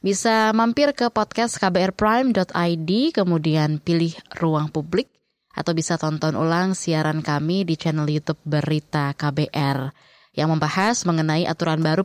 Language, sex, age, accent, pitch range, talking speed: Indonesian, female, 20-39, native, 160-205 Hz, 125 wpm